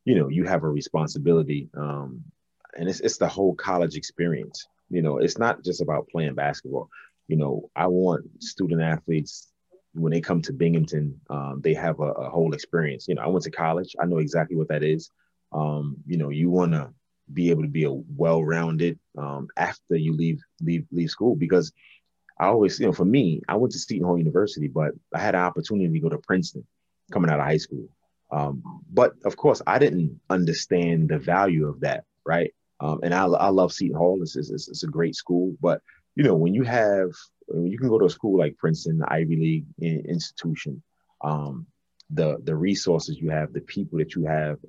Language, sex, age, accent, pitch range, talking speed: English, male, 30-49, American, 75-90 Hz, 205 wpm